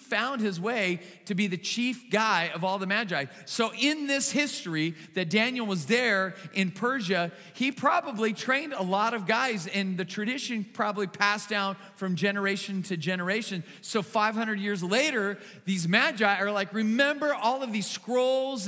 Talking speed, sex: 165 wpm, male